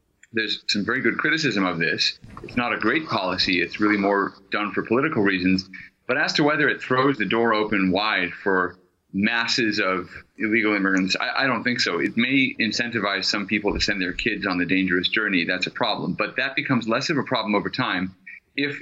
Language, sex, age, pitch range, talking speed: English, male, 30-49, 100-130 Hz, 205 wpm